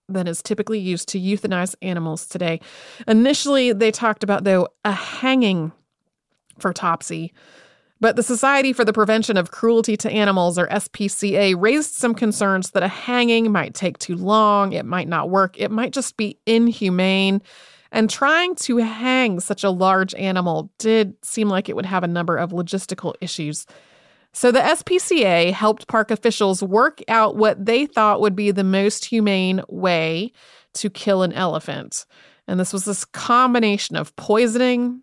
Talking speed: 165 wpm